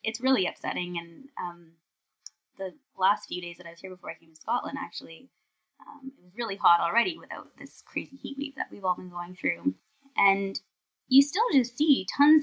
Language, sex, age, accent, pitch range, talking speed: English, female, 20-39, American, 190-275 Hz, 200 wpm